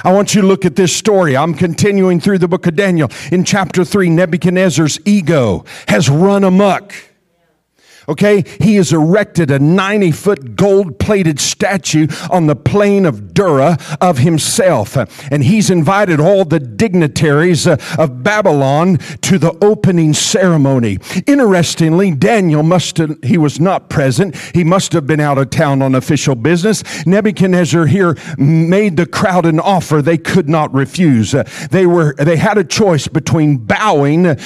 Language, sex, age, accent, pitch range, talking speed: English, male, 50-69, American, 155-195 Hz, 150 wpm